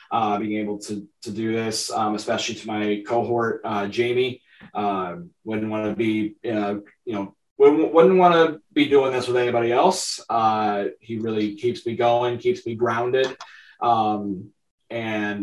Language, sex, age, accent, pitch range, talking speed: English, male, 20-39, American, 105-135 Hz, 165 wpm